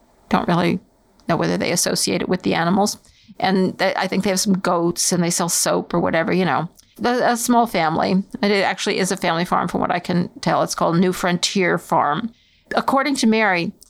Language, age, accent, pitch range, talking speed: English, 50-69, American, 190-245 Hz, 215 wpm